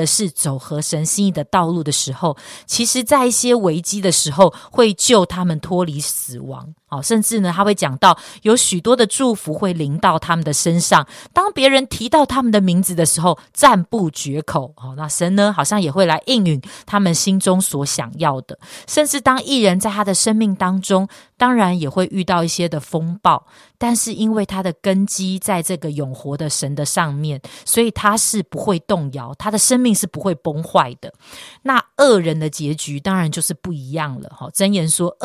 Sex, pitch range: female, 155-215 Hz